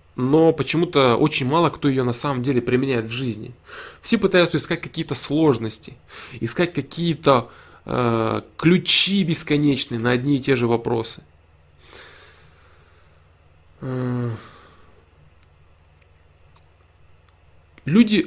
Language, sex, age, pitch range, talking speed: Russian, male, 20-39, 110-160 Hz, 90 wpm